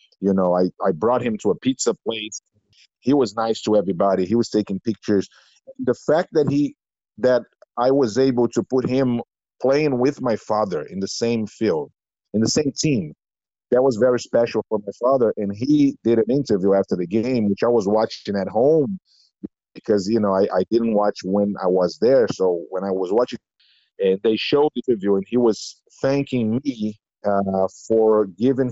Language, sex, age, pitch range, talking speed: Danish, male, 50-69, 100-125 Hz, 190 wpm